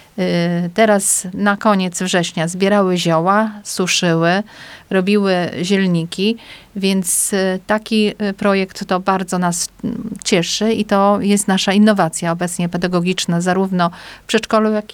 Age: 40-59